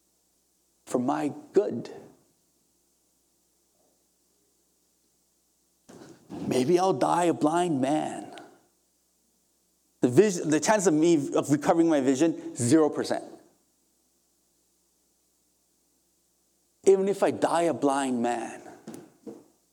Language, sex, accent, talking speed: English, male, American, 80 wpm